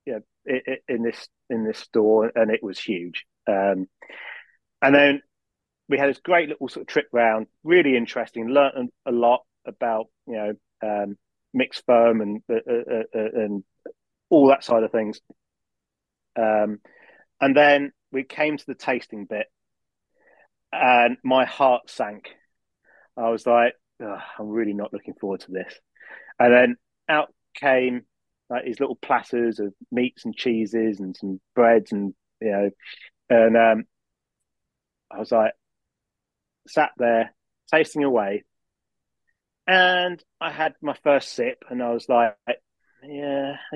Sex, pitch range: male, 115-145 Hz